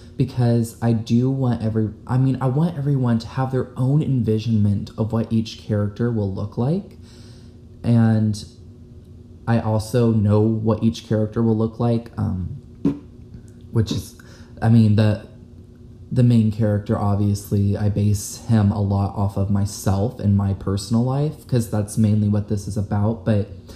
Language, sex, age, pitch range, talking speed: English, male, 20-39, 105-125 Hz, 150 wpm